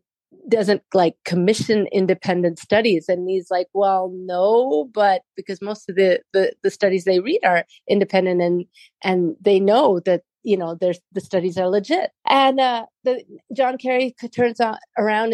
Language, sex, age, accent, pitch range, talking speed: English, female, 40-59, American, 190-255 Hz, 160 wpm